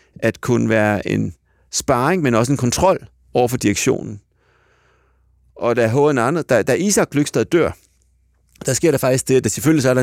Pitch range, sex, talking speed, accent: 100-135 Hz, male, 175 wpm, native